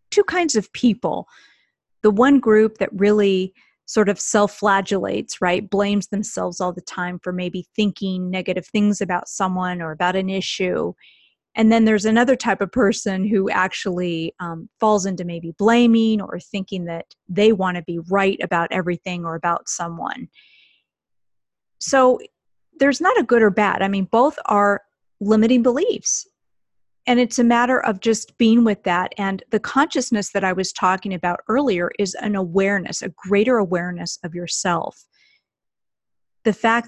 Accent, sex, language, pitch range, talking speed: American, female, English, 185-225 Hz, 160 wpm